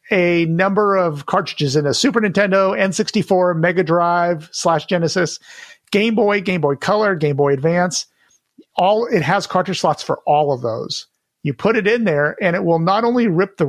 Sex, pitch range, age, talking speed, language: male, 150-190 Hz, 50-69, 185 wpm, English